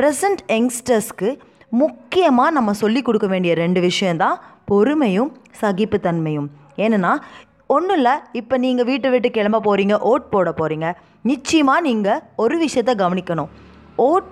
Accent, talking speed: native, 120 wpm